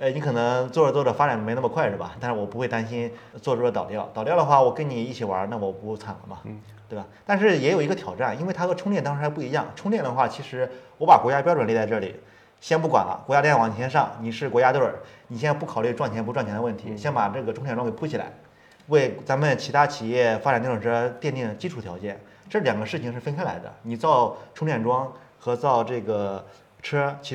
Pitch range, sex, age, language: 115-150 Hz, male, 30-49, Chinese